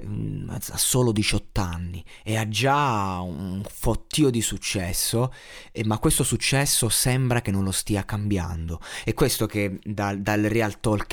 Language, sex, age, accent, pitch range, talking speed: Italian, male, 20-39, native, 105-130 Hz, 150 wpm